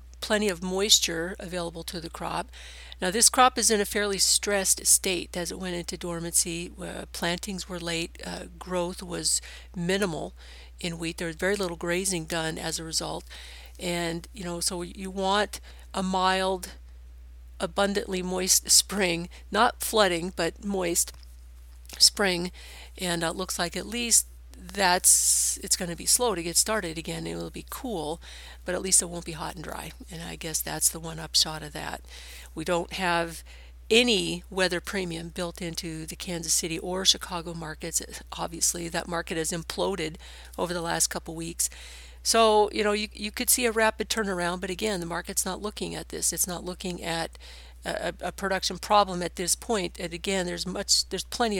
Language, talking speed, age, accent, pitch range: English, 180 wpm, 50-69, American, 135-190 Hz